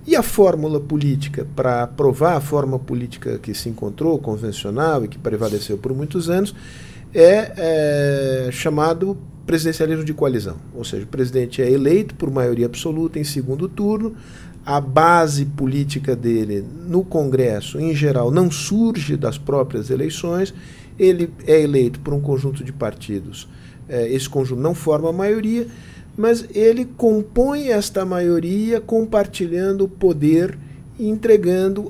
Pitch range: 135-185 Hz